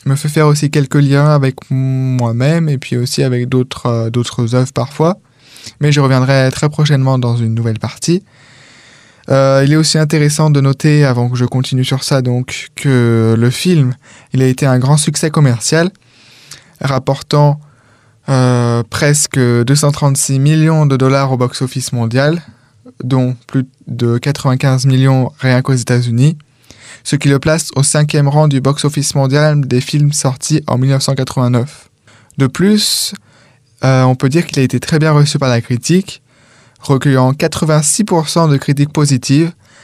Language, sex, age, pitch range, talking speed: French, male, 20-39, 125-145 Hz, 155 wpm